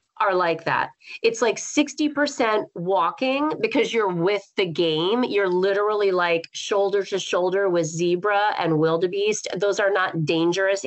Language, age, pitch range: English, 30-49, 185-250 Hz